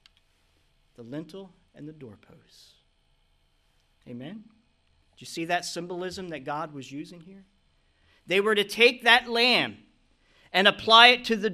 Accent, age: American, 40-59